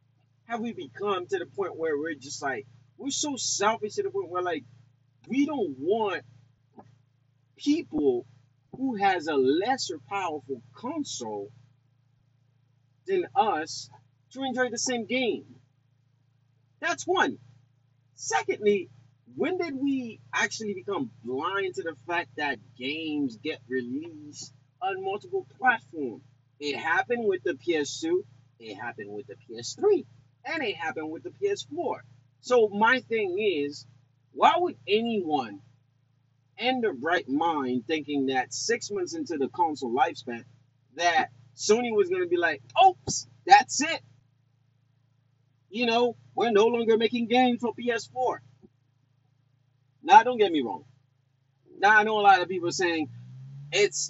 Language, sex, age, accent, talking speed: English, male, 30-49, American, 135 wpm